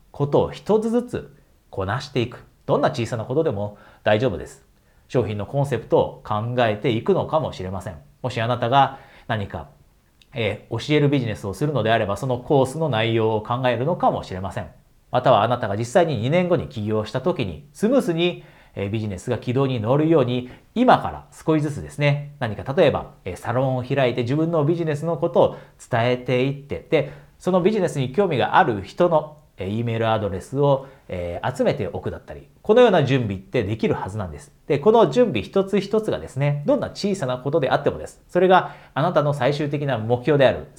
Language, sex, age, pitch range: Japanese, male, 40-59, 120-170 Hz